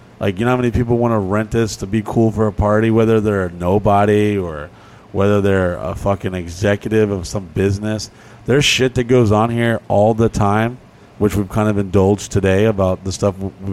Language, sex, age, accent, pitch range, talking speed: English, male, 30-49, American, 100-125 Hz, 205 wpm